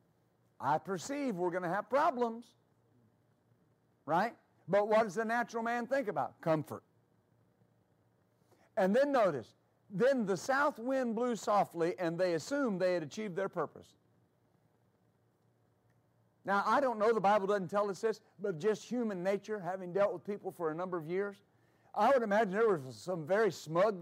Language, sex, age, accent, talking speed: English, male, 50-69, American, 160 wpm